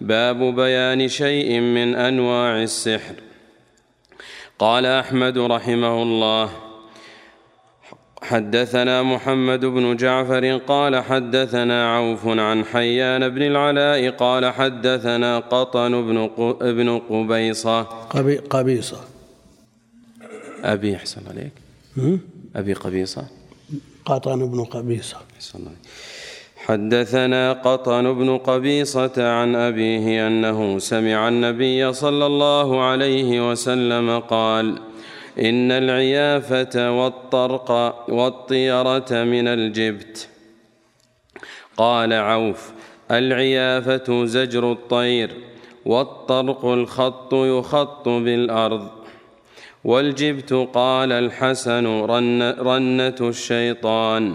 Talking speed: 80 wpm